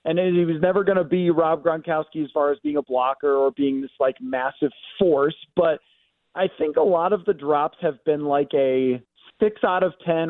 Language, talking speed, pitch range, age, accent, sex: English, 215 wpm, 165-195 Hz, 30-49, American, male